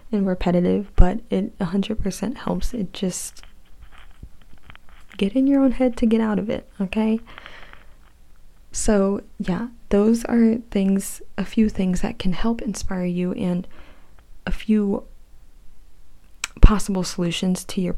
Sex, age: female, 20-39